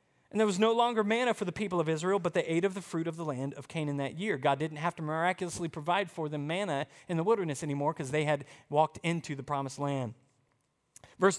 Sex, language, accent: male, English, American